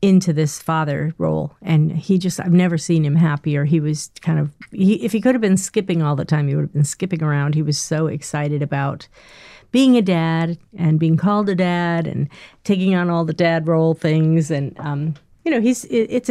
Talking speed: 215 wpm